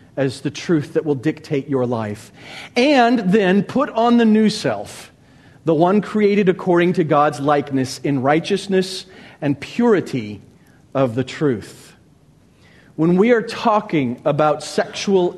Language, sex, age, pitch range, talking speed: English, male, 40-59, 155-210 Hz, 135 wpm